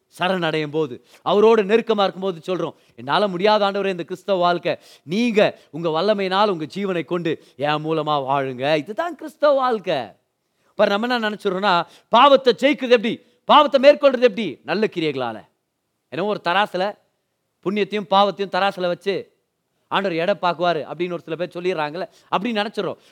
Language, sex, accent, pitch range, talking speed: Tamil, male, native, 180-255 Hz, 140 wpm